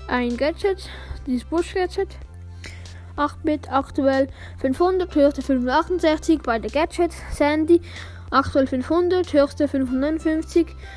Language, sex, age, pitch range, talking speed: German, female, 10-29, 235-315 Hz, 105 wpm